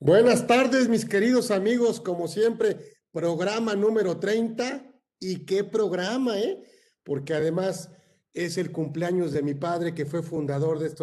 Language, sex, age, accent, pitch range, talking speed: Spanish, male, 50-69, Mexican, 150-180 Hz, 145 wpm